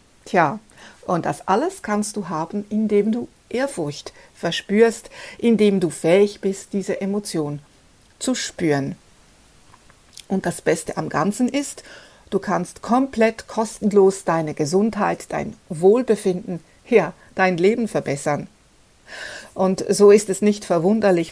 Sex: female